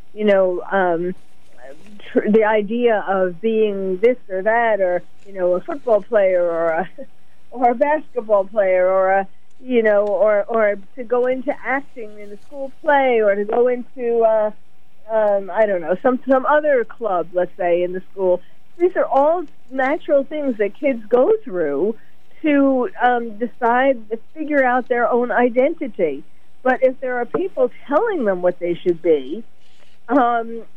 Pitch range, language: 190-260 Hz, English